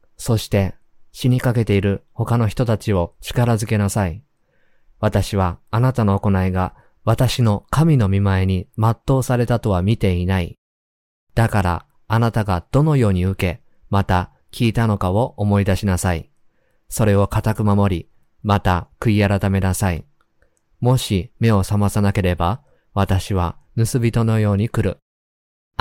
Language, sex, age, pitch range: Japanese, male, 20-39, 95-120 Hz